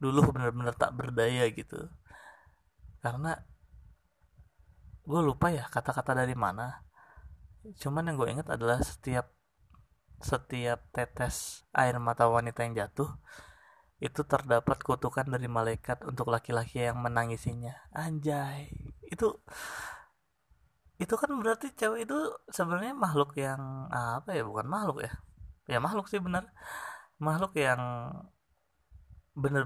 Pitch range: 115-145 Hz